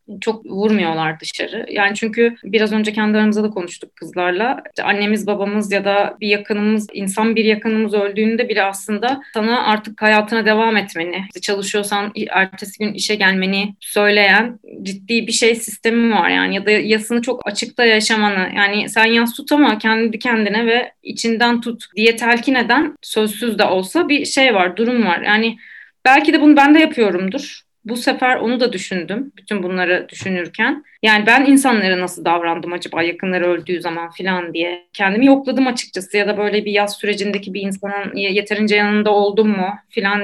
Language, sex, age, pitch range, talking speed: Turkish, female, 30-49, 195-235 Hz, 165 wpm